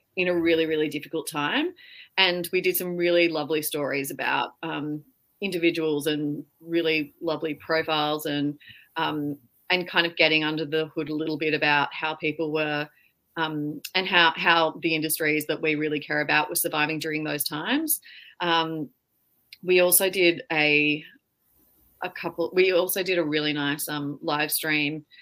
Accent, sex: Australian, female